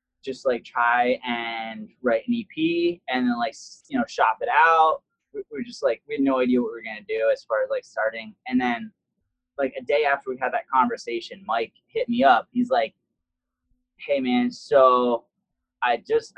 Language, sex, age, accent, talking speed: English, male, 20-39, American, 195 wpm